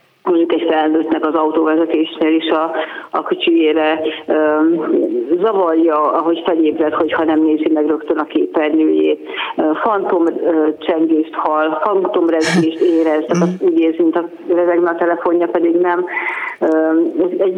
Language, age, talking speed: Hungarian, 40-59, 120 wpm